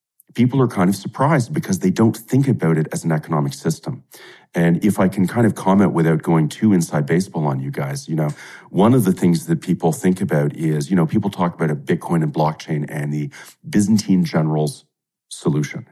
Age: 40-59